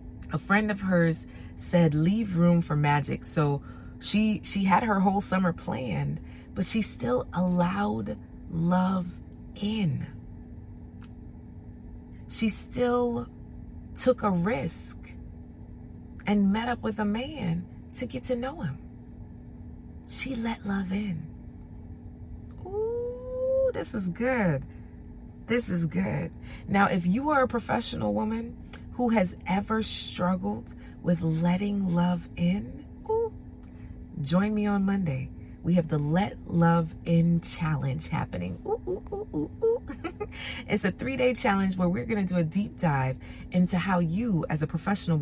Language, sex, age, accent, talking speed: English, female, 30-49, American, 125 wpm